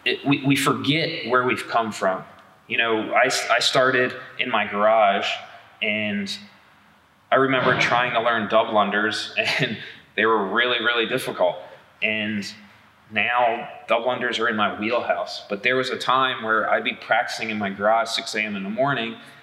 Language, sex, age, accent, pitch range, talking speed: English, male, 20-39, American, 110-130 Hz, 175 wpm